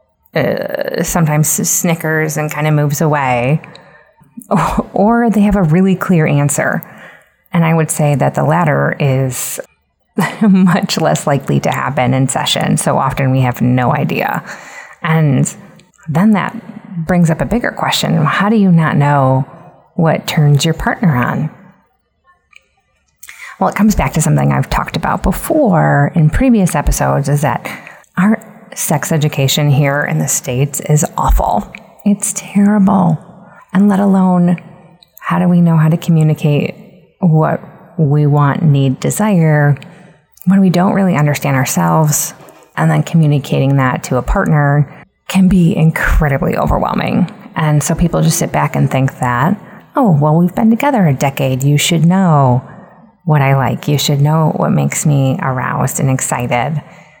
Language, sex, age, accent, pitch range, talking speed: English, female, 30-49, American, 145-185 Hz, 150 wpm